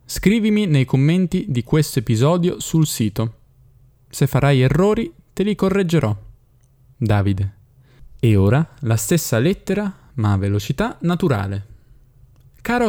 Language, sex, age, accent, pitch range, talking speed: Italian, male, 10-29, native, 110-140 Hz, 115 wpm